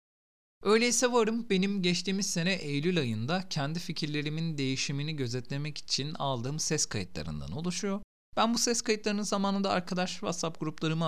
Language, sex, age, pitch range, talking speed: Turkish, male, 40-59, 120-190 Hz, 130 wpm